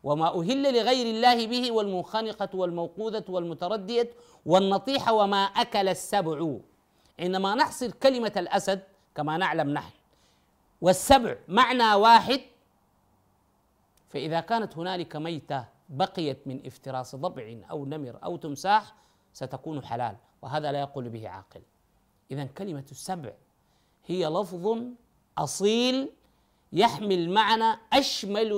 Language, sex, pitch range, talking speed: Arabic, male, 145-210 Hz, 105 wpm